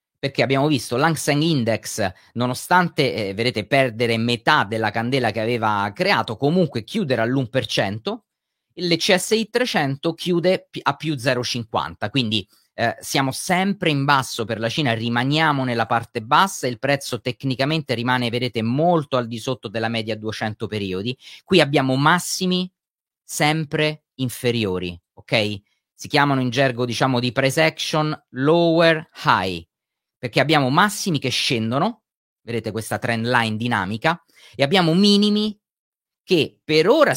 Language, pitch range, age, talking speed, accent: Italian, 115-150 Hz, 30-49, 130 wpm, native